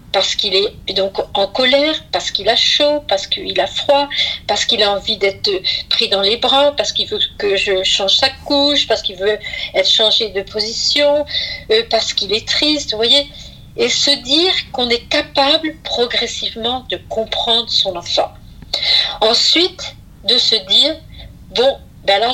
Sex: female